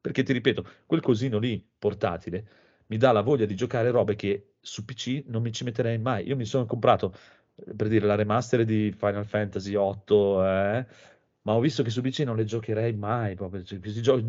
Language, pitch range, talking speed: Italian, 100-120 Hz, 195 wpm